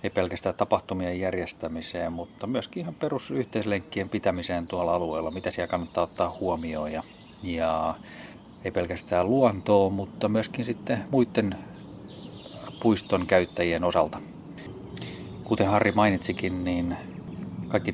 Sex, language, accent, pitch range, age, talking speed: male, Finnish, native, 90-105 Hz, 30-49, 105 wpm